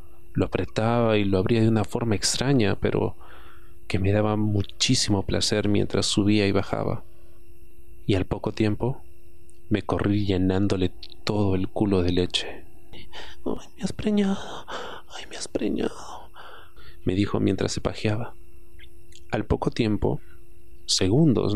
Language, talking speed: Spanish, 135 wpm